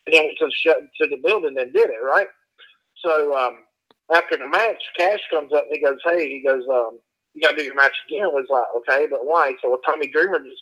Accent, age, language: American, 50-69, English